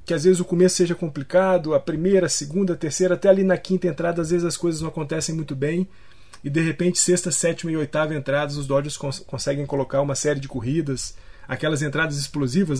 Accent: Brazilian